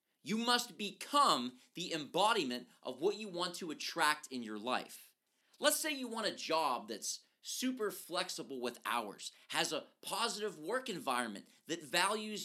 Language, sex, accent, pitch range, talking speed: English, male, American, 155-235 Hz, 155 wpm